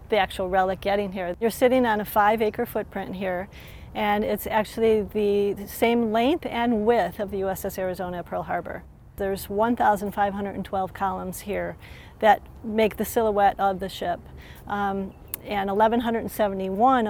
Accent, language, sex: American, English, female